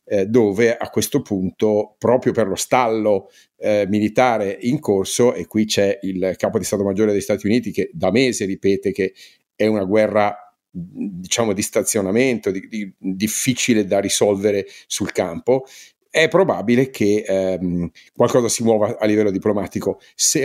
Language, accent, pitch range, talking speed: Italian, native, 95-115 Hz, 155 wpm